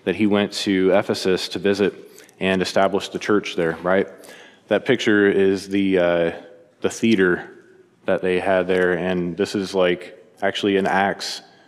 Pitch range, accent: 100-115 Hz, American